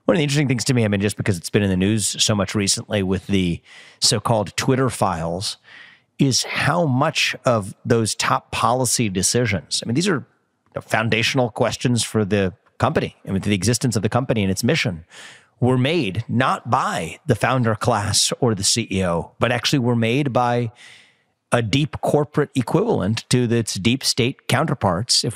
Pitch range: 110-135 Hz